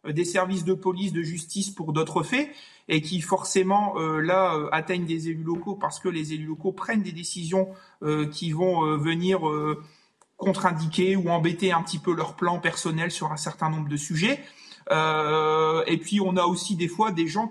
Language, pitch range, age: French, 170-205 Hz, 30-49